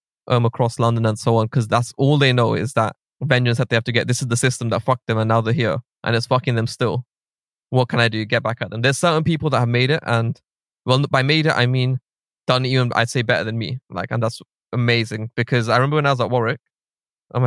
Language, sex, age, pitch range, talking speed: English, male, 20-39, 115-130 Hz, 265 wpm